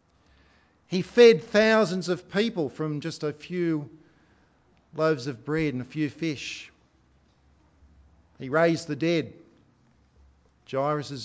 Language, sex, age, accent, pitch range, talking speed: English, male, 50-69, Australian, 140-195 Hz, 110 wpm